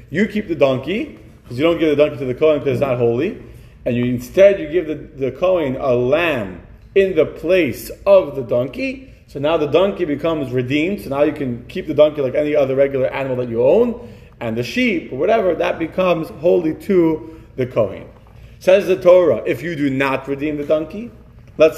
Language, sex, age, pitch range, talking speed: English, male, 30-49, 125-165 Hz, 205 wpm